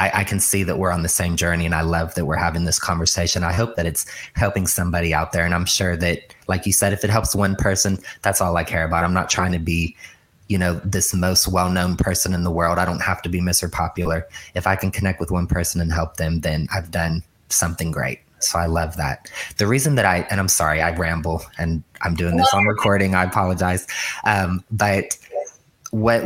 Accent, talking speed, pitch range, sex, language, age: American, 235 wpm, 85-95 Hz, male, English, 20-39